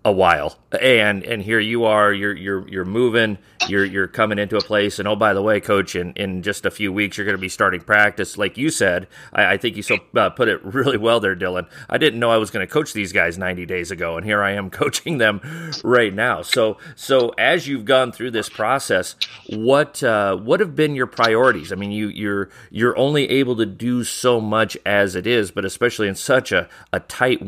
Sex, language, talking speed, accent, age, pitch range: male, English, 235 wpm, American, 30-49, 100-120 Hz